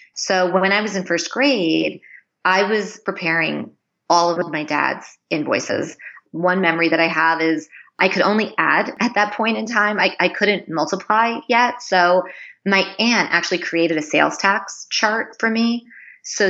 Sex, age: female, 30-49